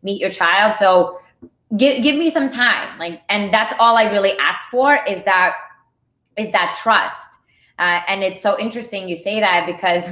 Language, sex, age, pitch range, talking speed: English, female, 20-39, 185-230 Hz, 185 wpm